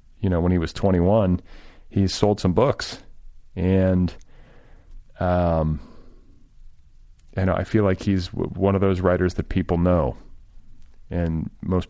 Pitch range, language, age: 90-105 Hz, English, 40-59